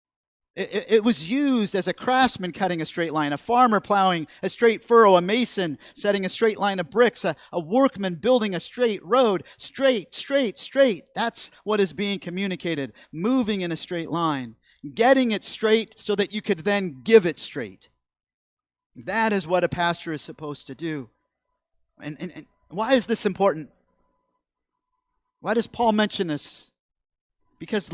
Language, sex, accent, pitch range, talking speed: English, male, American, 170-250 Hz, 165 wpm